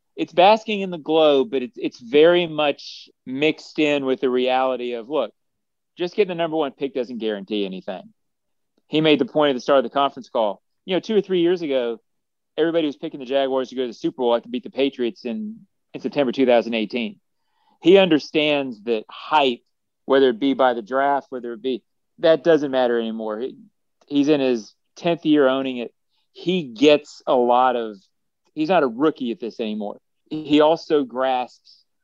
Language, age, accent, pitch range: English, 40-59, American, 120-155 Hz